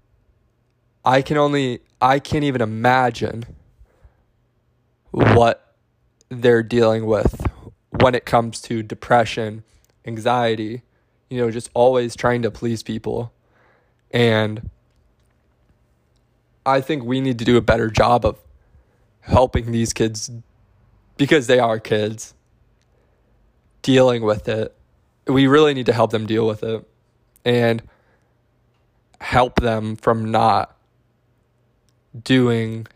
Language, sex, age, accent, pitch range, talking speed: English, male, 20-39, American, 110-120 Hz, 110 wpm